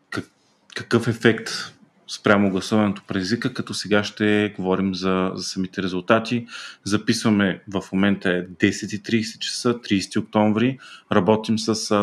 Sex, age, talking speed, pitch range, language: male, 30-49, 115 wpm, 95-110 Hz, Bulgarian